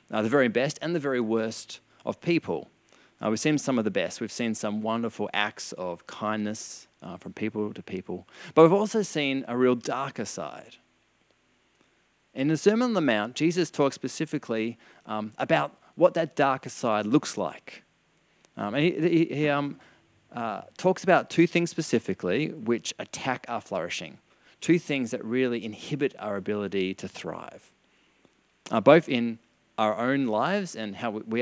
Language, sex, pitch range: English, male, 105-155 Hz